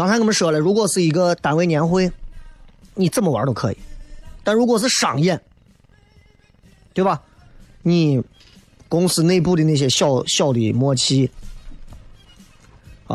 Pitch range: 120-180 Hz